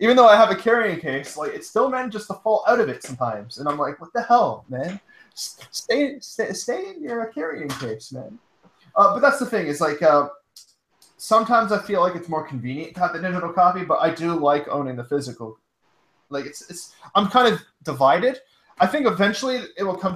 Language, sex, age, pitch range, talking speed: English, male, 20-39, 140-195 Hz, 215 wpm